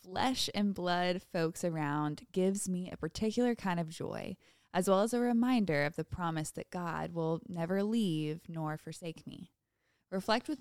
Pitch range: 165-210 Hz